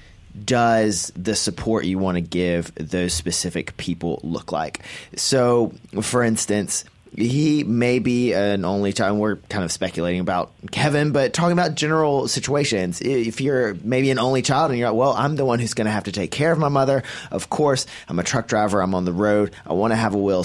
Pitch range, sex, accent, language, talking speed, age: 95-125 Hz, male, American, English, 210 wpm, 30-49